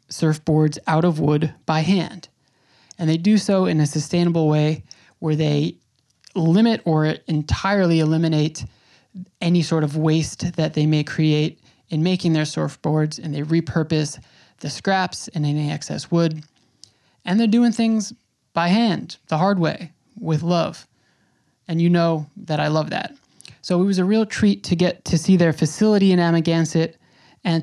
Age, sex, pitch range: 20-39, male, 155-180 Hz